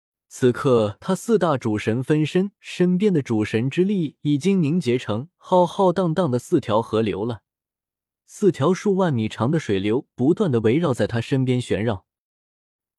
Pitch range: 115-170 Hz